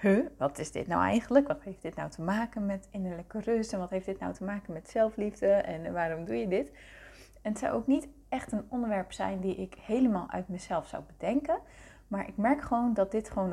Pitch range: 185-230 Hz